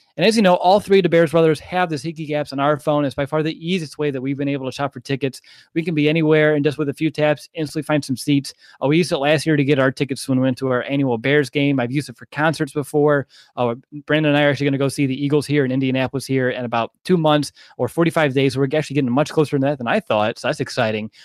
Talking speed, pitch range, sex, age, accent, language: 295 wpm, 135-160 Hz, male, 20-39, American, English